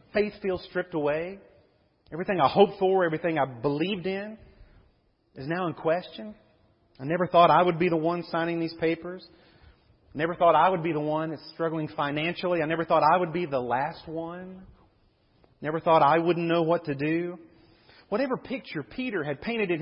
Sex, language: male, English